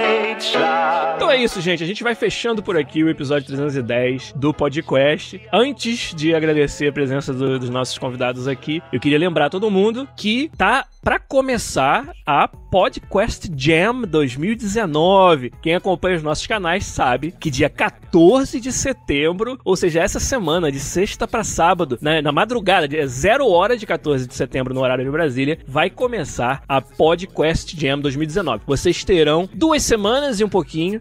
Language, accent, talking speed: Portuguese, Brazilian, 160 wpm